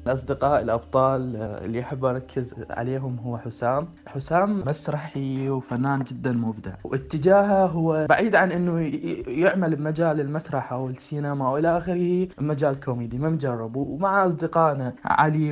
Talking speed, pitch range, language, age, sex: 125 wpm, 140-170 Hz, Arabic, 20-39, male